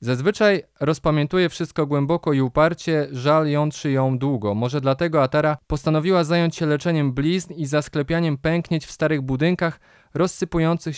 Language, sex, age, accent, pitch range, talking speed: Polish, male, 20-39, native, 130-160 Hz, 140 wpm